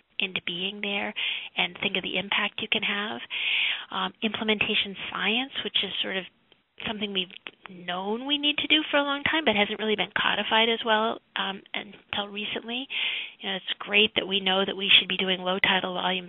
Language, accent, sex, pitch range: English, American, female, 185-220 Hz